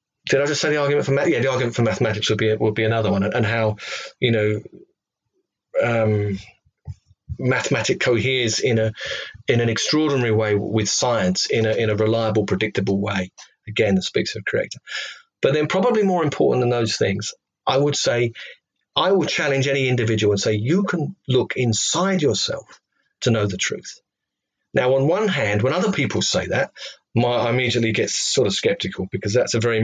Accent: British